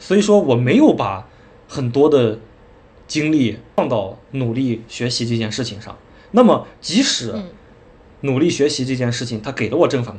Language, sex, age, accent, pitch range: Chinese, male, 20-39, native, 105-130 Hz